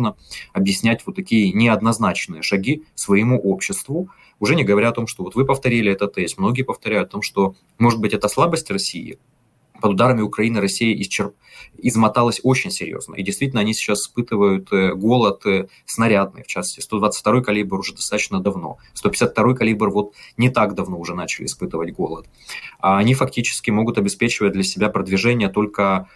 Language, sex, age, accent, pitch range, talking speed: Russian, male, 20-39, native, 100-120 Hz, 155 wpm